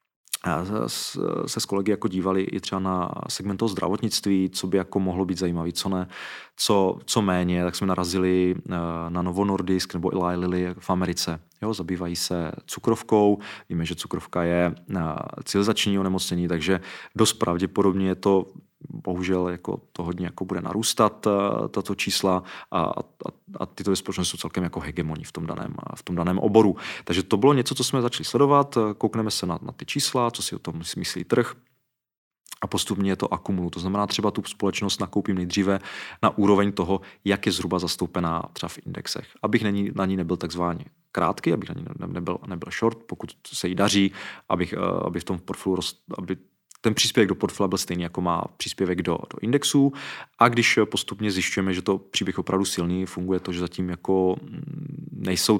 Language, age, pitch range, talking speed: Czech, 30-49, 90-105 Hz, 180 wpm